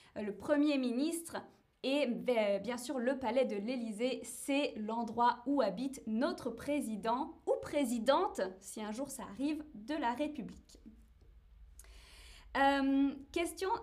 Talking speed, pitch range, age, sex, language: 125 wpm, 225-295 Hz, 20-39, female, French